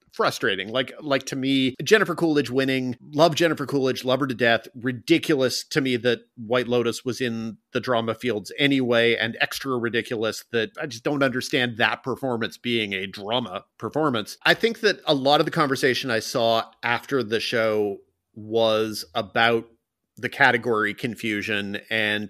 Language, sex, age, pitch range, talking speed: English, male, 40-59, 110-130 Hz, 160 wpm